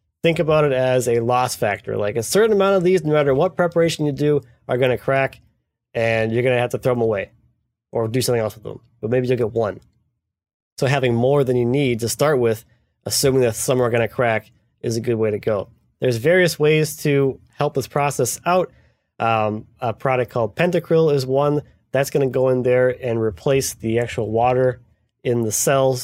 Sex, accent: male, American